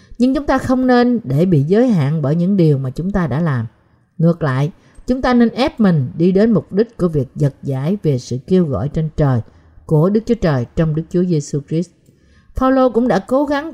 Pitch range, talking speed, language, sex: 150-225 Hz, 225 wpm, Vietnamese, female